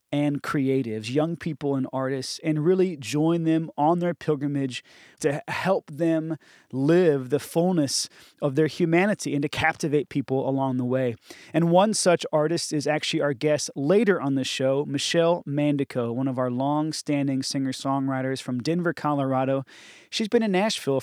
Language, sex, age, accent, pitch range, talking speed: English, male, 30-49, American, 135-170 Hz, 155 wpm